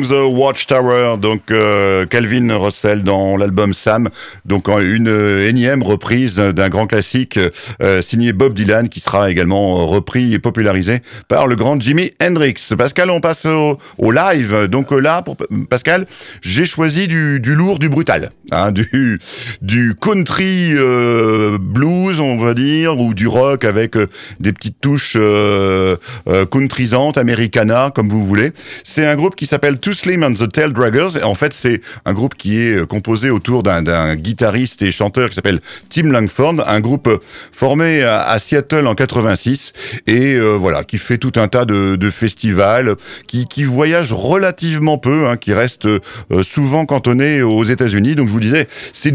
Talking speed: 165 wpm